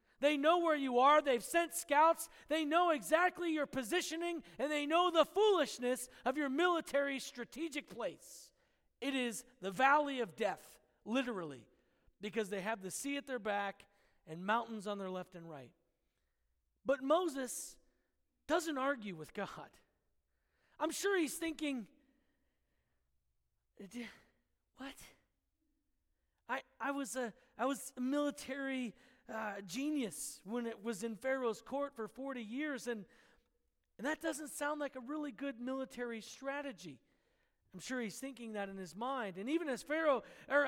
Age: 40-59